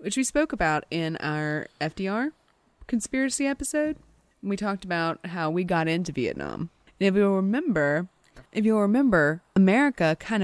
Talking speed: 150 wpm